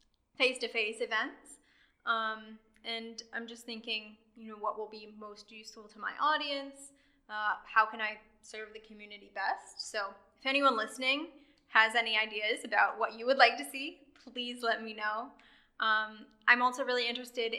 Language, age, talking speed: English, 10-29, 165 wpm